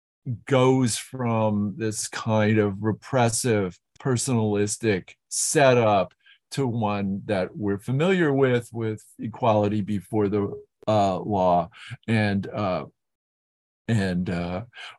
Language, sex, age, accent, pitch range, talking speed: English, male, 50-69, American, 110-140 Hz, 95 wpm